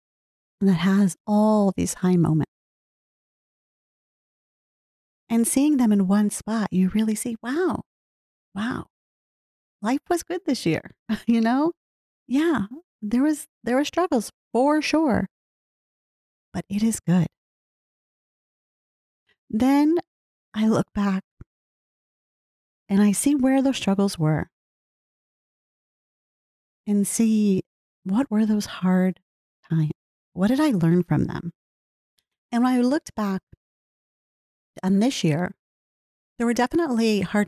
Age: 40-59